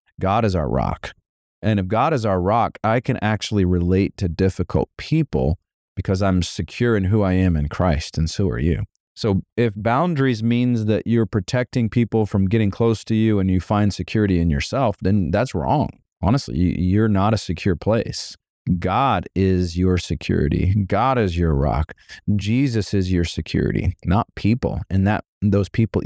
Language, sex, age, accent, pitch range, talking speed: English, male, 30-49, American, 90-120 Hz, 175 wpm